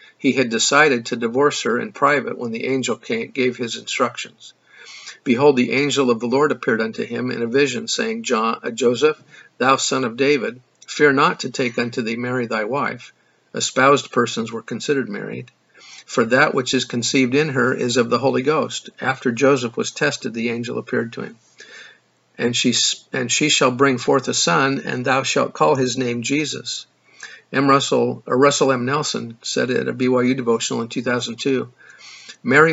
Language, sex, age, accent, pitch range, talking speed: English, male, 50-69, American, 120-140 Hz, 180 wpm